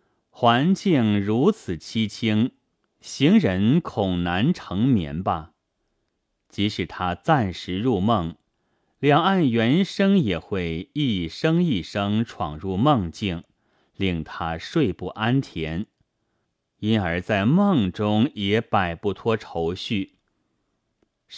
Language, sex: Chinese, male